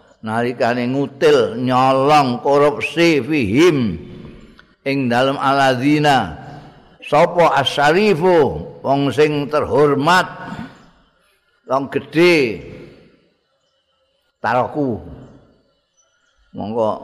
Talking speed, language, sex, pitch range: 60 wpm, Indonesian, male, 115-170 Hz